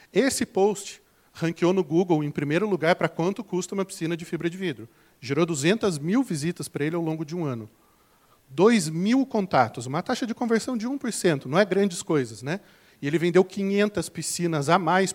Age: 40-59